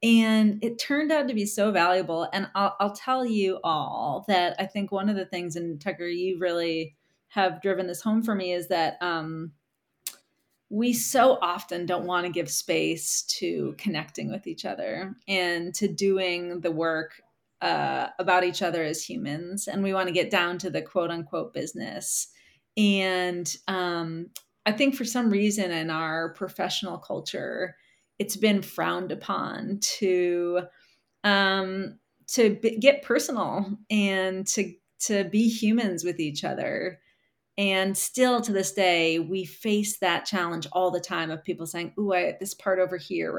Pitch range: 175-205 Hz